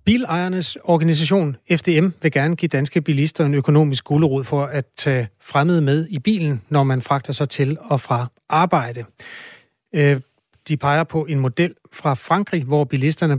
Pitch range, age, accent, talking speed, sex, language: 135-165 Hz, 30-49, native, 155 wpm, male, Danish